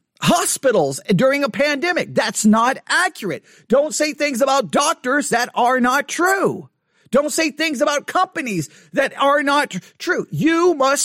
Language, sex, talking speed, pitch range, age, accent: English, male, 145 wpm, 200-280 Hz, 40-59, American